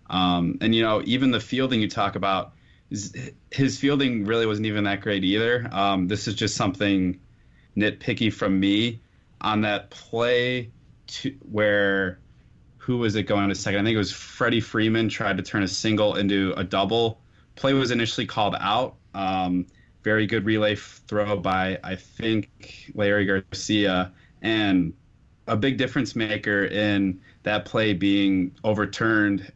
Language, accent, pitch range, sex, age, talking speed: English, American, 100-115 Hz, male, 20-39, 150 wpm